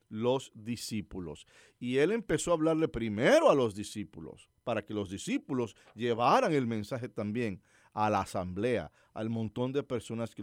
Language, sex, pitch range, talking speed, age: English, male, 105-140 Hz, 155 wpm, 50-69